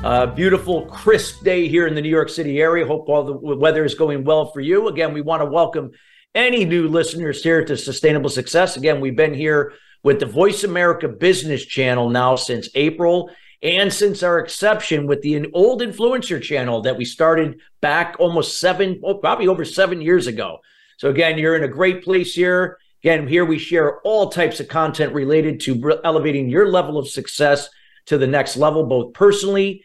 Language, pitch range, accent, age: English, 140-180 Hz, American, 50-69